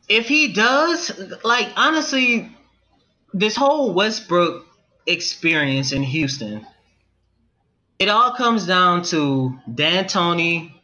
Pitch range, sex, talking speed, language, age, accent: 165-235 Hz, male, 100 wpm, English, 20-39, American